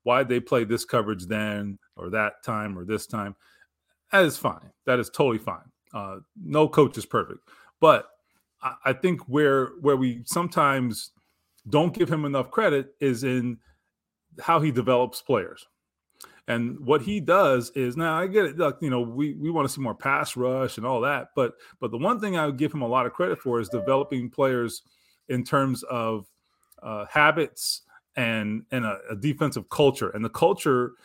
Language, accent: English, American